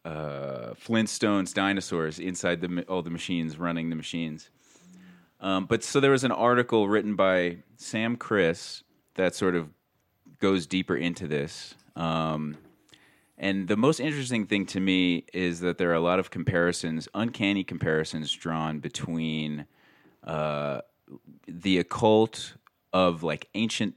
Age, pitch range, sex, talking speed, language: 30-49, 85-105 Hz, male, 140 wpm, English